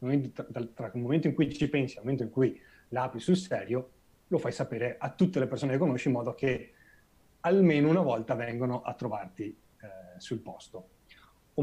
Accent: native